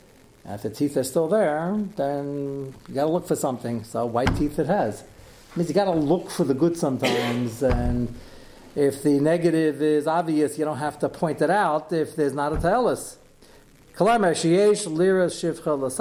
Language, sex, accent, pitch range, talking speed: English, male, American, 130-165 Hz, 170 wpm